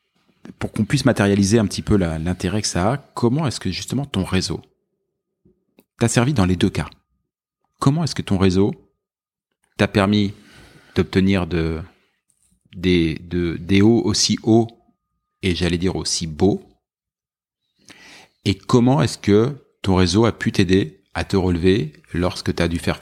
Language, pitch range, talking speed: French, 85-110 Hz, 160 wpm